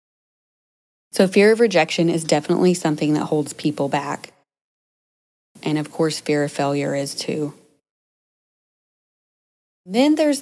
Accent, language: American, English